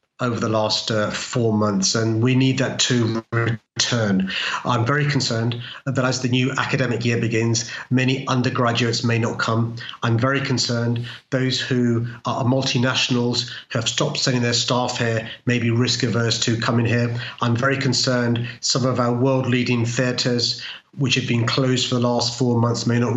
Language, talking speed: English, 175 wpm